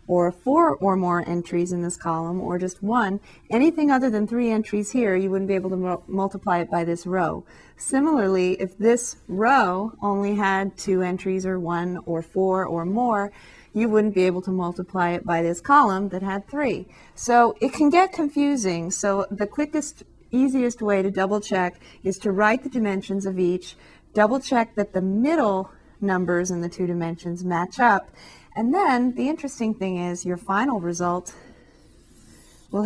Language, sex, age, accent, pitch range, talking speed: English, female, 40-59, American, 175-220 Hz, 170 wpm